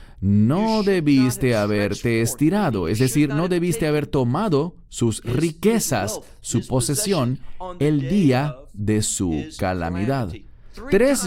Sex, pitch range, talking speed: male, 110-160 Hz, 105 wpm